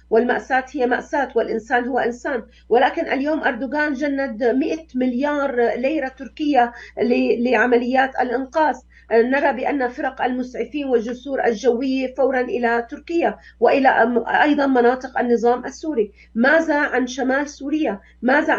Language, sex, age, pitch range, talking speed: Arabic, female, 40-59, 235-290 Hz, 115 wpm